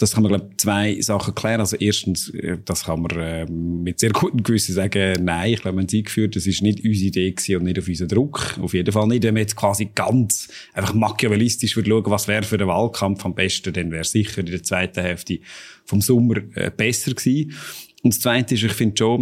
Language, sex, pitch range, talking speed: German, male, 95-115 Hz, 225 wpm